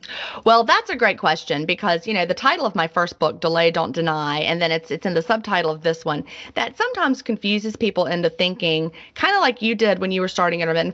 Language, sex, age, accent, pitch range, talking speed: English, female, 30-49, American, 170-215 Hz, 235 wpm